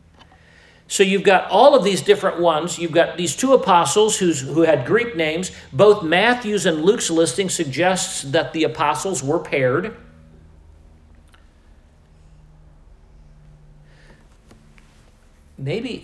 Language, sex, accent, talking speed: English, male, American, 110 wpm